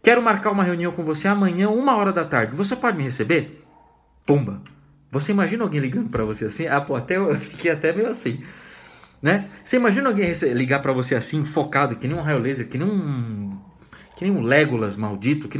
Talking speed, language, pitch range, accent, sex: 195 wpm, Portuguese, 140-220 Hz, Brazilian, male